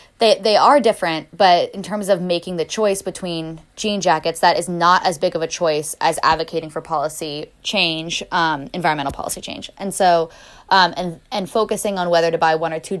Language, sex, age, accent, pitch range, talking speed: English, female, 10-29, American, 160-185 Hz, 205 wpm